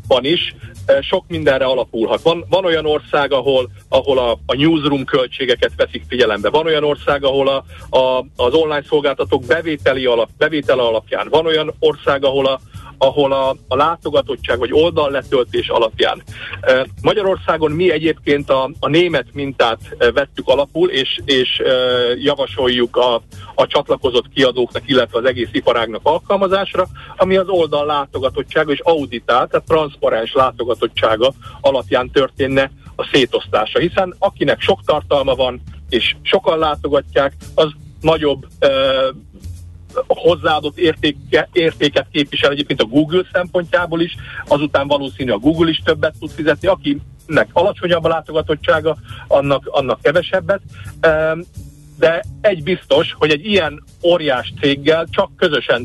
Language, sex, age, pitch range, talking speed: Hungarian, male, 50-69, 130-180 Hz, 130 wpm